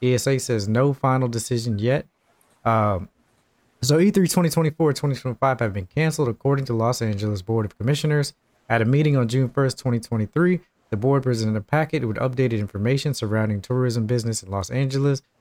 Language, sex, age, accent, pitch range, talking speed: English, male, 20-39, American, 110-140 Hz, 170 wpm